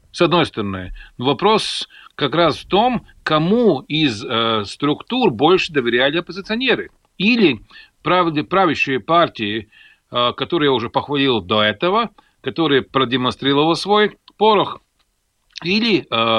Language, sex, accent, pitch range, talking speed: Russian, male, native, 125-170 Hz, 115 wpm